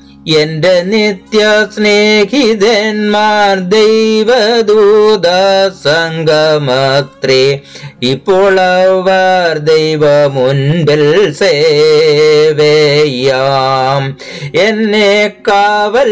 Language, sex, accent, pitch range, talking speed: Malayalam, male, native, 150-210 Hz, 35 wpm